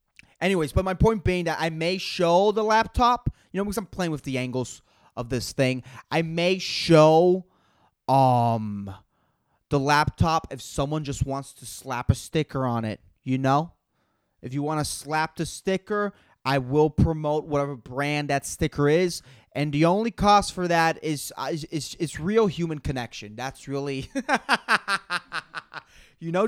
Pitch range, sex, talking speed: 125-175 Hz, male, 165 wpm